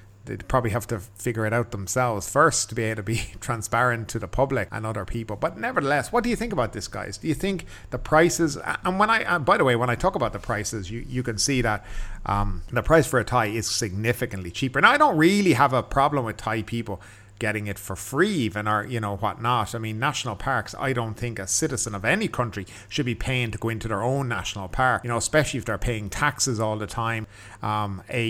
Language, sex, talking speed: English, male, 245 wpm